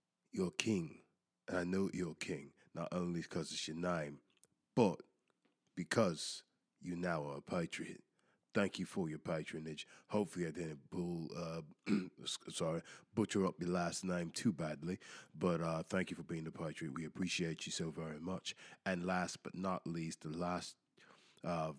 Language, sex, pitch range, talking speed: English, male, 80-95 Hz, 165 wpm